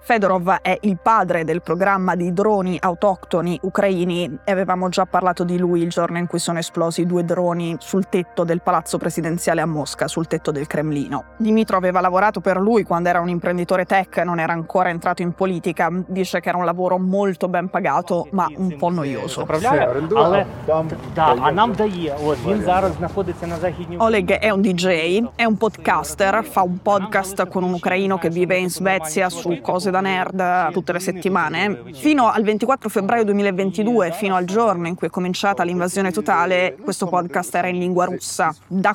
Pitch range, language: 170-195 Hz, Italian